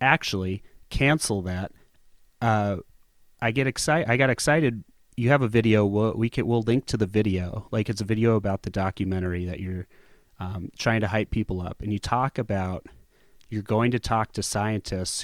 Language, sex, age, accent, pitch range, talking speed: English, male, 30-49, American, 100-120 Hz, 185 wpm